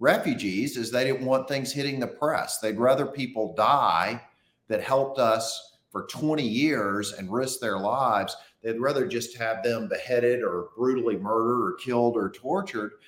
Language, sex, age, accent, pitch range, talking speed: English, male, 50-69, American, 110-135 Hz, 165 wpm